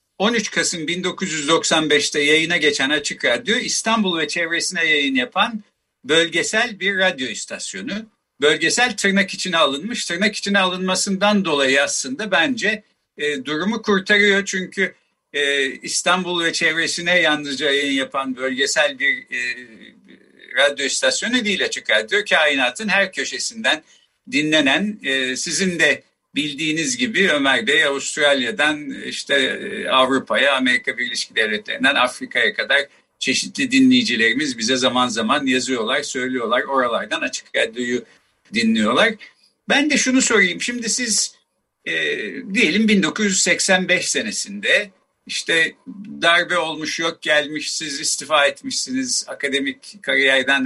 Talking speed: 115 wpm